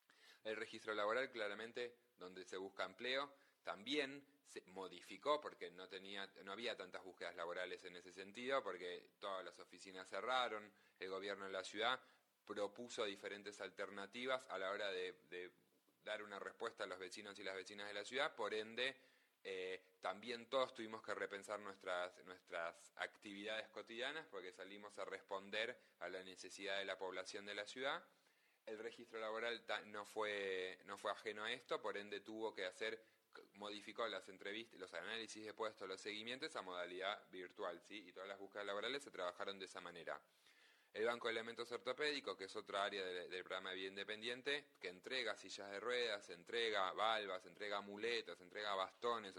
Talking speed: 170 wpm